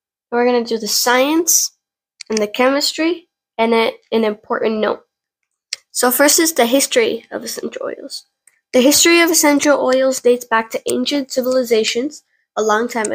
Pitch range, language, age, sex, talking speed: 230-285 Hz, English, 10-29, female, 150 wpm